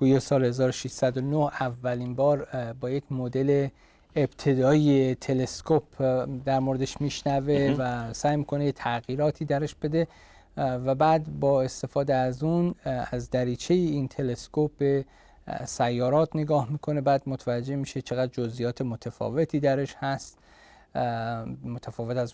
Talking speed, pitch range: 115 wpm, 125-150 Hz